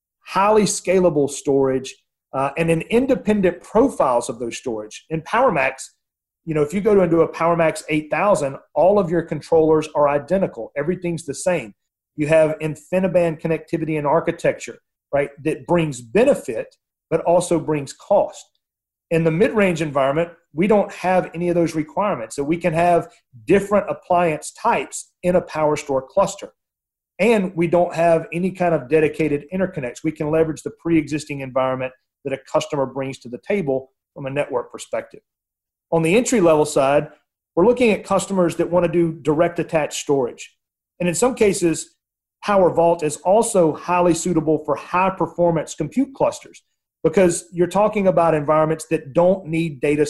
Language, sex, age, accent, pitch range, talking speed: English, male, 40-59, American, 150-180 Hz, 160 wpm